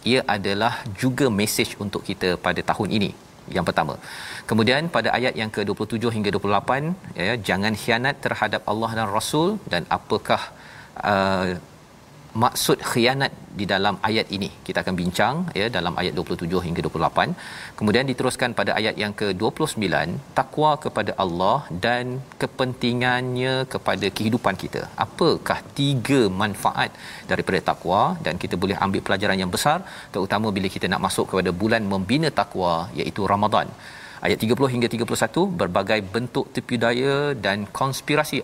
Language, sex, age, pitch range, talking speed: Malayalam, male, 40-59, 100-130 Hz, 140 wpm